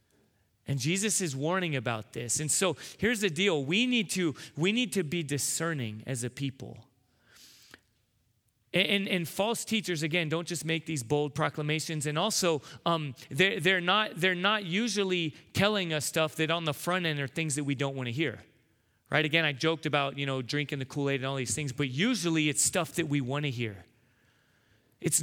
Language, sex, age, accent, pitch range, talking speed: English, male, 30-49, American, 140-180 Hz, 195 wpm